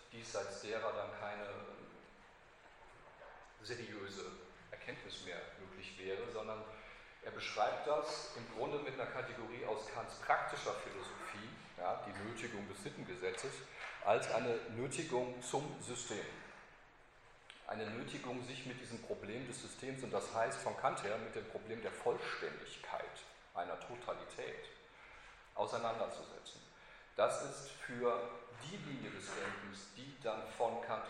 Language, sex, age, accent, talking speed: German, male, 40-59, German, 125 wpm